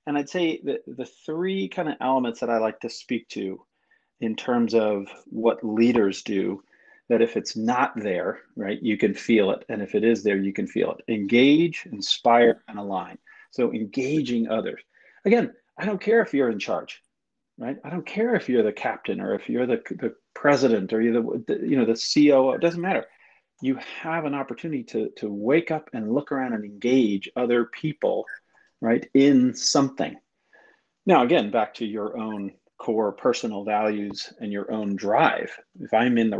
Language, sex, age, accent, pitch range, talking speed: English, male, 40-59, American, 110-145 Hz, 190 wpm